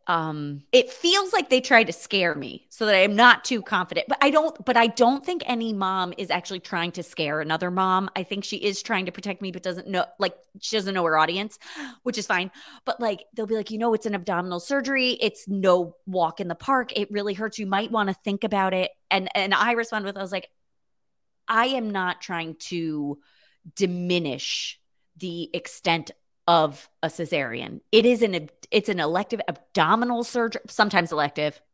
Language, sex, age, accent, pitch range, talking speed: English, female, 30-49, American, 180-230 Hz, 205 wpm